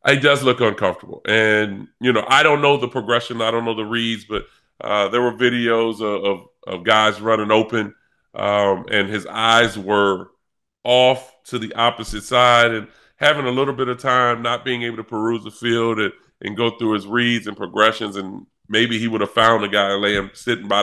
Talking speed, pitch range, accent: 205 wpm, 105-125 Hz, American